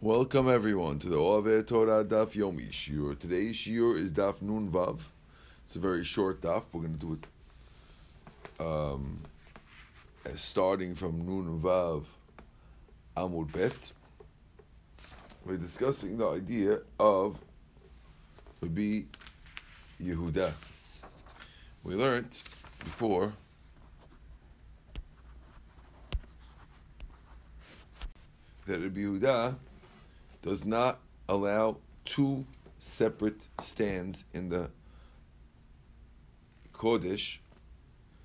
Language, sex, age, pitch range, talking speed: English, male, 60-79, 75-100 Hz, 85 wpm